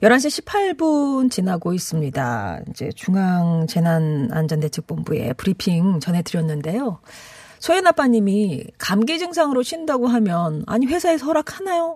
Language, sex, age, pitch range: Korean, female, 40-59, 155-230 Hz